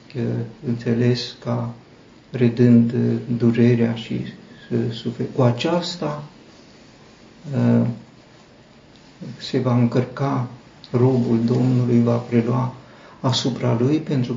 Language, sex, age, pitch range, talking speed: Romanian, male, 50-69, 120-135 Hz, 75 wpm